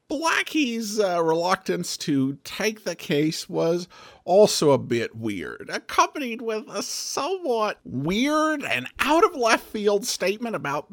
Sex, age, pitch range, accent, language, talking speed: male, 50-69, 145-210 Hz, American, English, 130 wpm